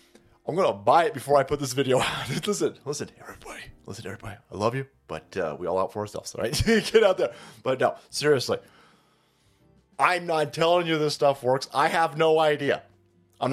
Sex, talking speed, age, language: male, 210 wpm, 30-49, English